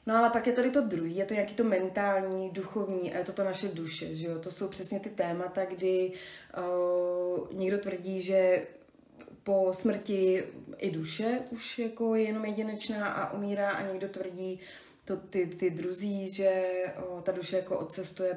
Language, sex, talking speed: Czech, female, 180 wpm